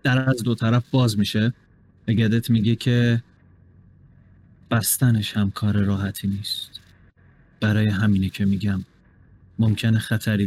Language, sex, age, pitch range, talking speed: Persian, male, 30-49, 95-130 Hz, 120 wpm